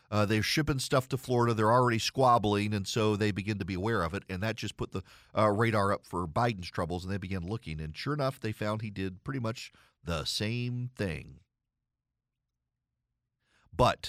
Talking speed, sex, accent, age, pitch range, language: 195 wpm, male, American, 40-59, 100-145 Hz, English